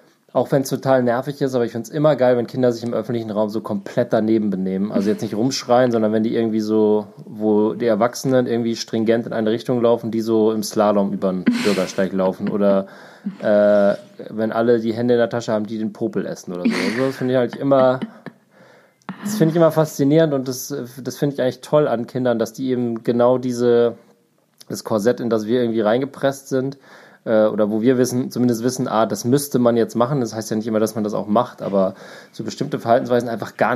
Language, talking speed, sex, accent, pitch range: German, 215 wpm, male, German, 105-125 Hz